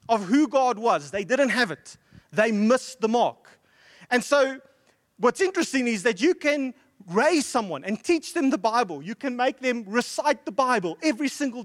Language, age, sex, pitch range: English, 30-49, male, 180-255 Hz